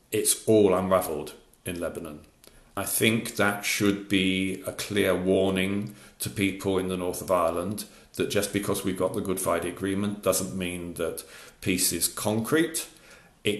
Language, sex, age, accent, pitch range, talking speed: English, male, 50-69, British, 90-105 Hz, 160 wpm